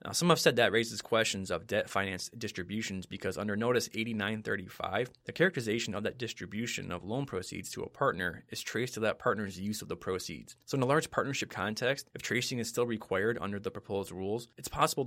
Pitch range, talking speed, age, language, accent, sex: 95-120 Hz, 205 wpm, 20-39, English, American, male